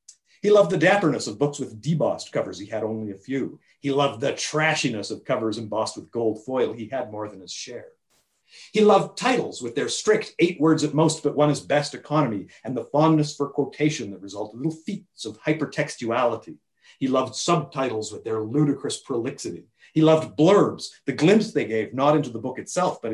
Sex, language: male, English